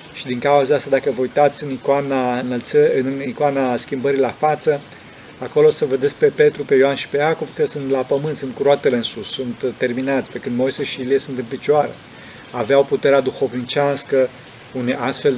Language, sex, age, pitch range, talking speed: Romanian, male, 30-49, 130-175 Hz, 190 wpm